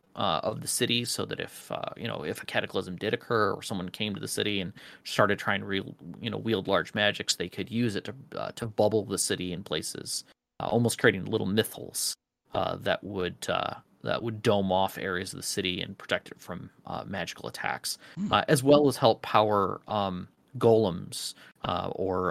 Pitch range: 95-120 Hz